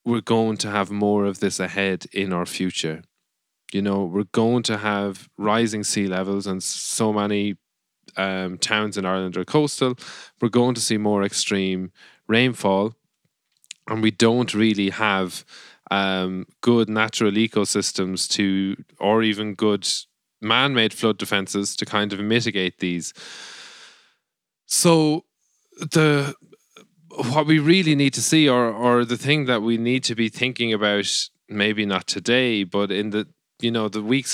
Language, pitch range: English, 100-120 Hz